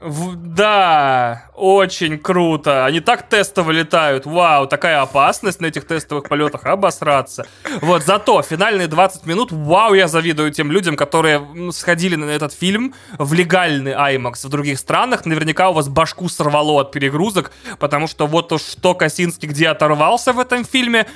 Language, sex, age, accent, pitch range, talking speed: Russian, male, 20-39, native, 145-185 Hz, 155 wpm